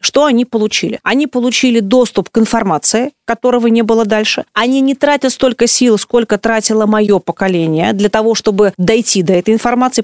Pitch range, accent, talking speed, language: 215-265 Hz, native, 165 wpm, Russian